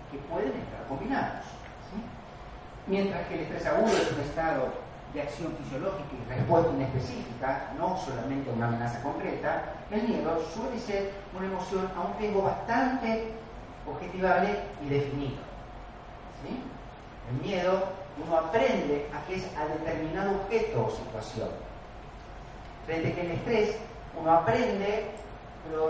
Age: 40-59